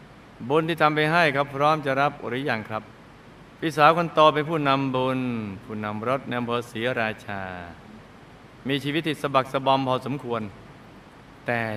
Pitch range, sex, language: 120-150 Hz, male, Thai